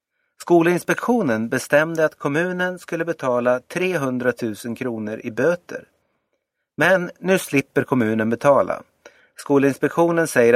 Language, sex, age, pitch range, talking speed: Swedish, male, 30-49, 120-165 Hz, 100 wpm